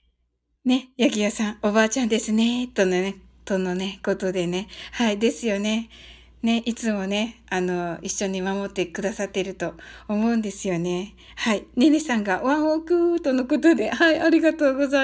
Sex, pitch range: female, 180-240 Hz